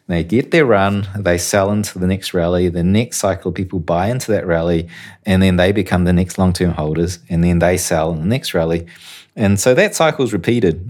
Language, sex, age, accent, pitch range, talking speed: English, male, 30-49, Australian, 85-100 Hz, 220 wpm